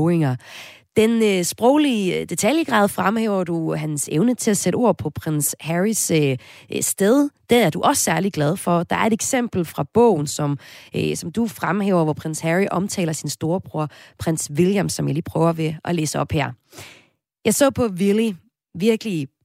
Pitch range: 155-215 Hz